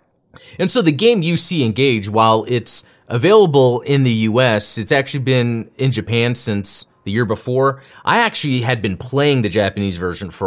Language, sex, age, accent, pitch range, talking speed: English, male, 30-49, American, 110-150 Hz, 180 wpm